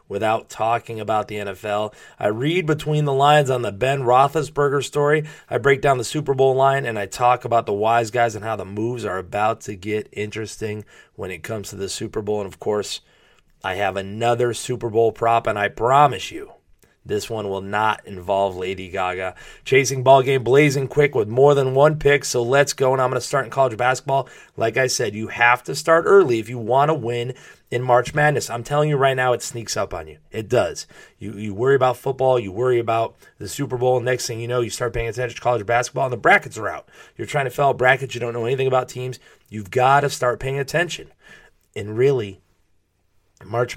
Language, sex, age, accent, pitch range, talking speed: English, male, 30-49, American, 110-135 Hz, 220 wpm